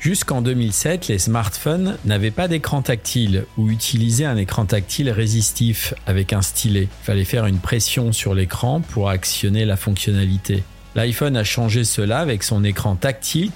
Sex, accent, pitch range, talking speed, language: male, French, 100-130 Hz, 160 wpm, French